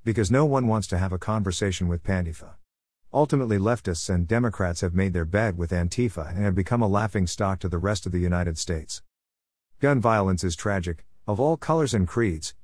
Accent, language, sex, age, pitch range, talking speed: American, English, male, 50-69, 90-115 Hz, 200 wpm